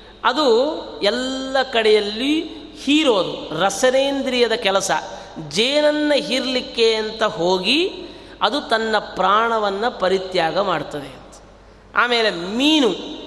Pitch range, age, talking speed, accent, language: 195-275 Hz, 30-49, 75 wpm, native, Kannada